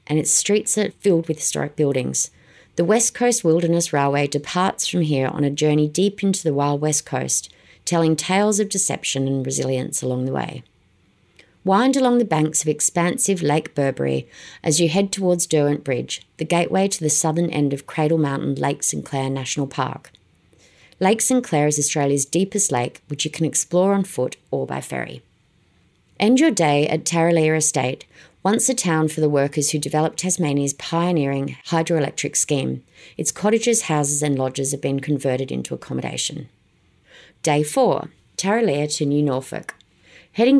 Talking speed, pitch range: 165 wpm, 140-180 Hz